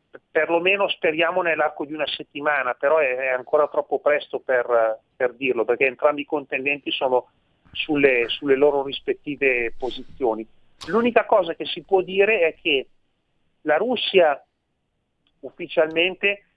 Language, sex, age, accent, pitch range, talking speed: Italian, male, 40-59, native, 130-165 Hz, 125 wpm